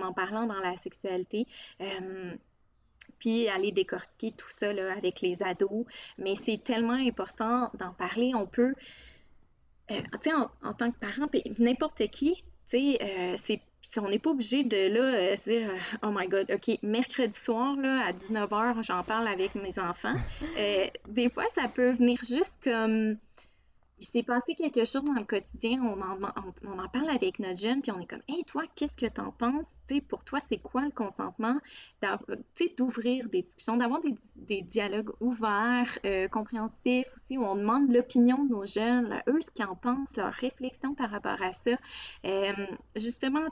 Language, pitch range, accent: French, 200-255 Hz, Canadian